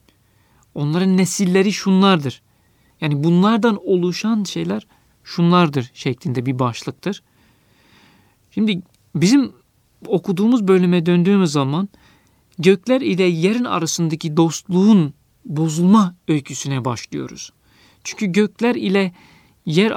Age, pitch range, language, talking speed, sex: 50-69, 130-190 Hz, Turkish, 85 wpm, male